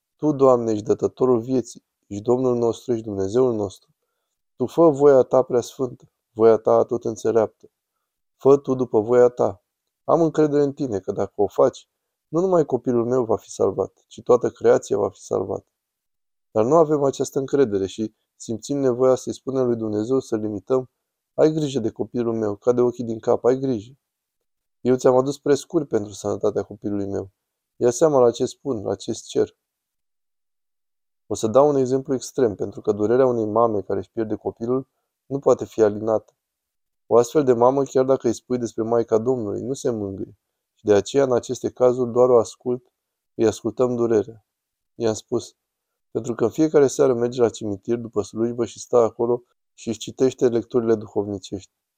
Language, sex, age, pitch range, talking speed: Romanian, male, 20-39, 110-130 Hz, 175 wpm